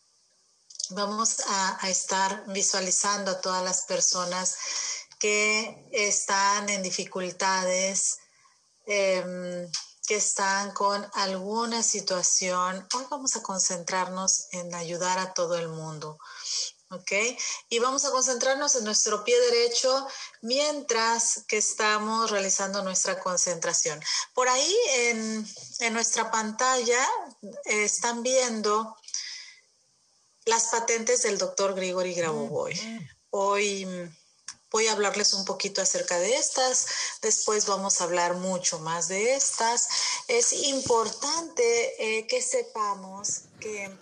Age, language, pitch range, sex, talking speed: 30-49, Spanish, 190-255 Hz, female, 110 wpm